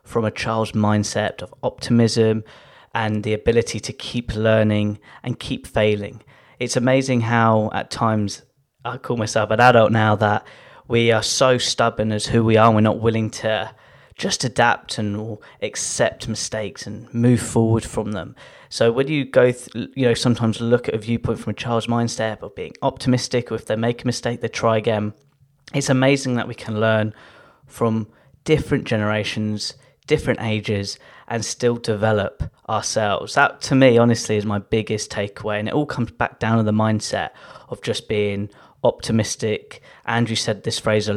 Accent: British